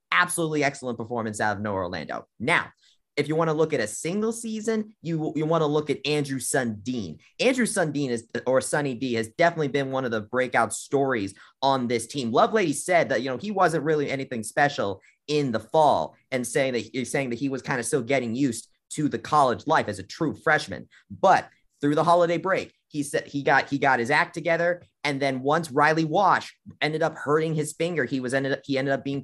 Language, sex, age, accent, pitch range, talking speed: English, male, 30-49, American, 130-160 Hz, 225 wpm